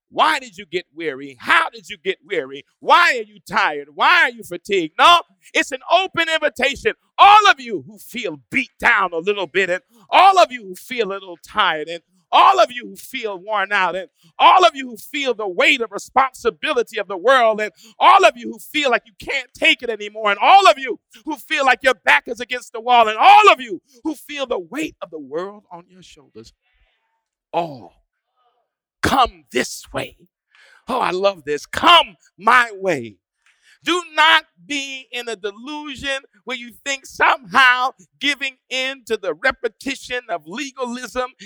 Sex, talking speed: male, 190 wpm